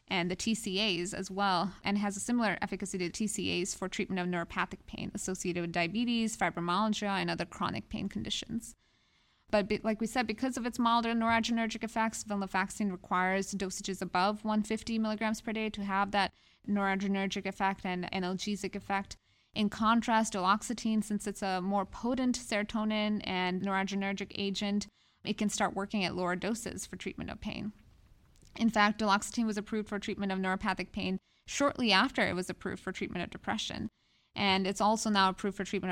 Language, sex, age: English, female, 20-39